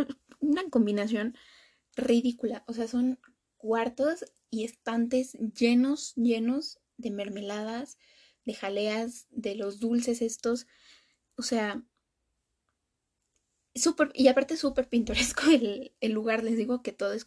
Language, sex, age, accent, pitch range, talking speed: Spanish, female, 10-29, Mexican, 220-270 Hz, 115 wpm